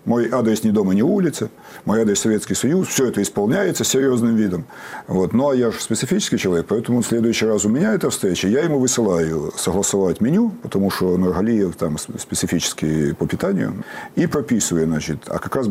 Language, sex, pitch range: Russian, male, 90-135 Hz